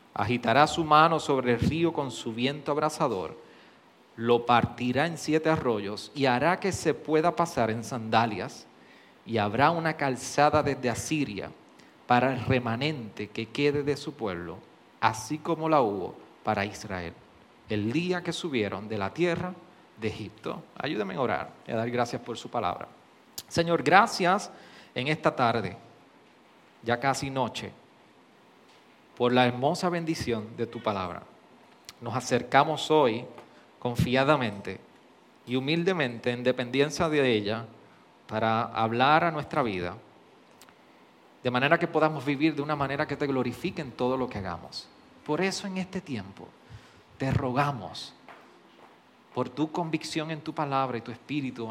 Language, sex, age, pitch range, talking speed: Spanish, male, 40-59, 115-155 Hz, 145 wpm